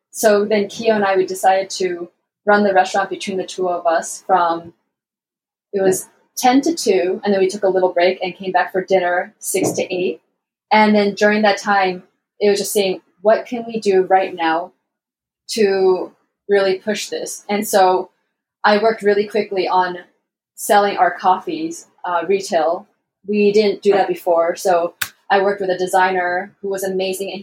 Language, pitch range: English, 185-210 Hz